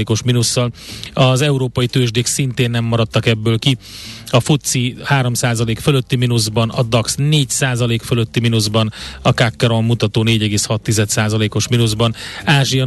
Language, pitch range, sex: Hungarian, 115-125 Hz, male